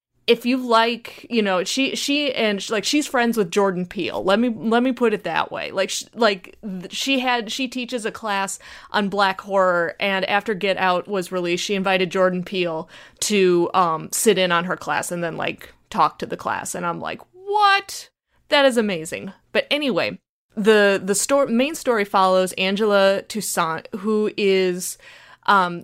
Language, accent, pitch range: English, American, 185-220 Hz